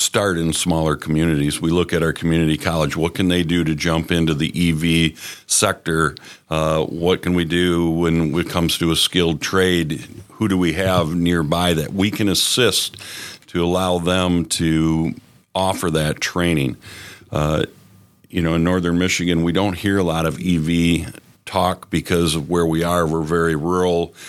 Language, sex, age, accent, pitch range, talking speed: English, male, 50-69, American, 80-90 Hz, 175 wpm